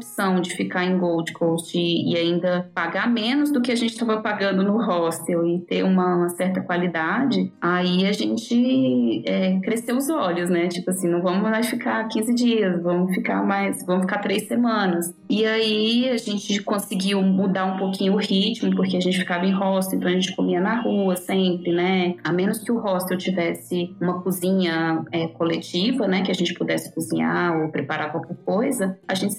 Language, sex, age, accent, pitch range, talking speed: Portuguese, female, 20-39, Brazilian, 175-215 Hz, 190 wpm